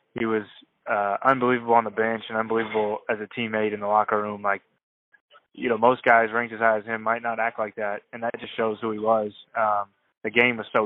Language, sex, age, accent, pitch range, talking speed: English, male, 20-39, American, 110-120 Hz, 240 wpm